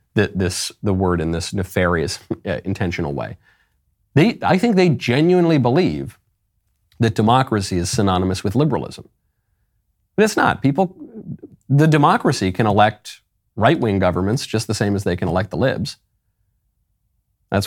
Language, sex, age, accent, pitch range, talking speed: English, male, 40-59, American, 90-120 Hz, 145 wpm